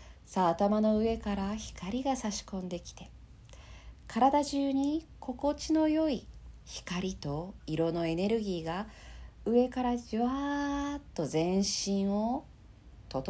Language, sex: Japanese, female